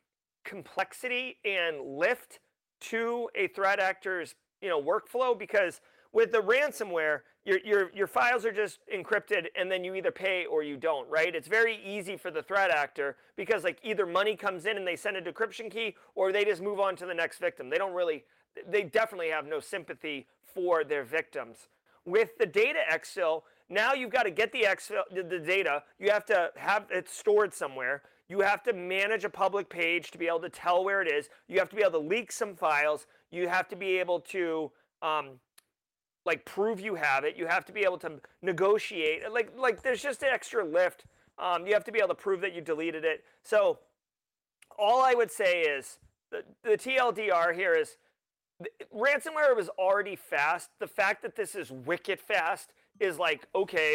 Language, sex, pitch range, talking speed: English, male, 180-285 Hz, 195 wpm